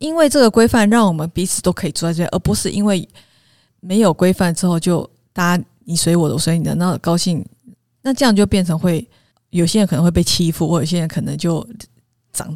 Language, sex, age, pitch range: Chinese, female, 20-39, 165-205 Hz